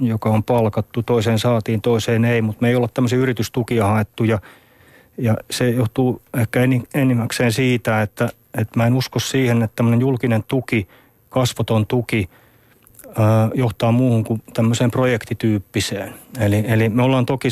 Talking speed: 145 wpm